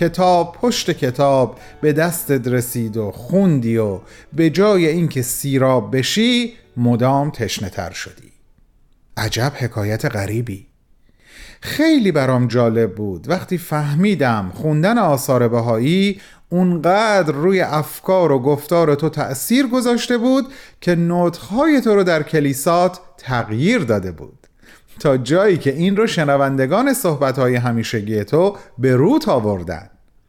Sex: male